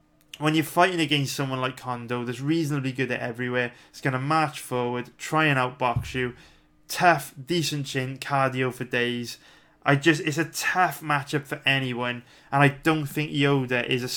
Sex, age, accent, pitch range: male, 20-39, British, 125-145 Hz